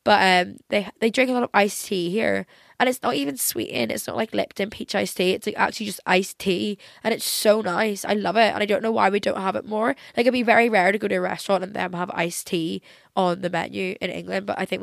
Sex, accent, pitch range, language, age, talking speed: female, British, 185-235 Hz, English, 10-29, 280 wpm